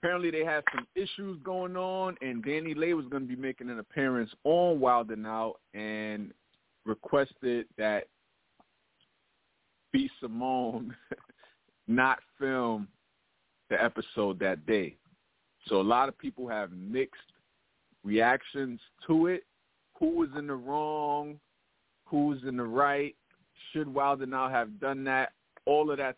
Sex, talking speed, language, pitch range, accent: male, 135 wpm, English, 105-145 Hz, American